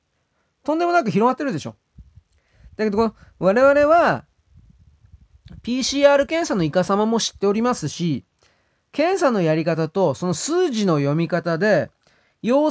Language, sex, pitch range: Japanese, male, 150-235 Hz